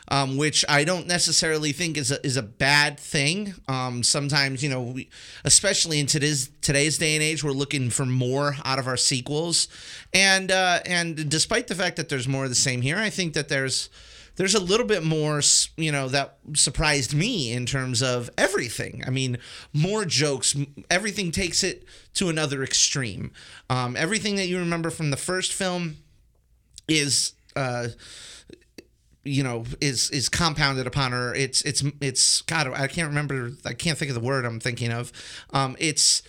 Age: 30-49